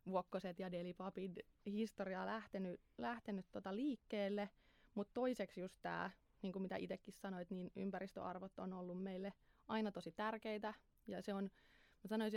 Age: 20-39